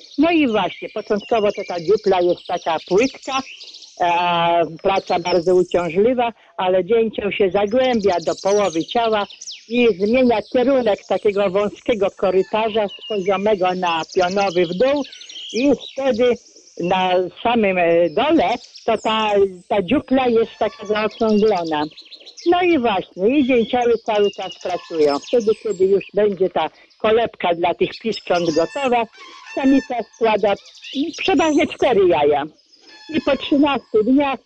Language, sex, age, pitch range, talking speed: Polish, female, 50-69, 200-250 Hz, 125 wpm